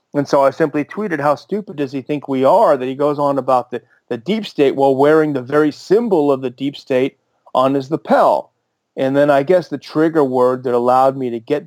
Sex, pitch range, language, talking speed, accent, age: male, 120-140 Hz, English, 230 wpm, American, 30-49